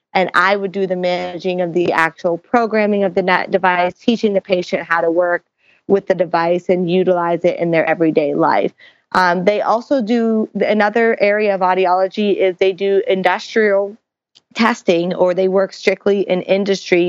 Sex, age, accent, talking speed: female, 30-49, American, 170 wpm